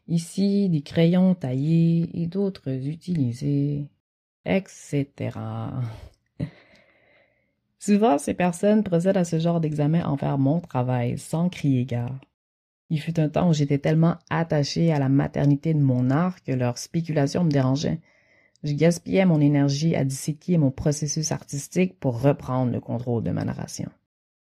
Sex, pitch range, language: female, 125-155 Hz, French